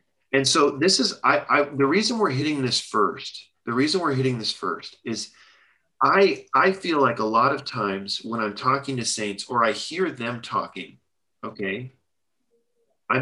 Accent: American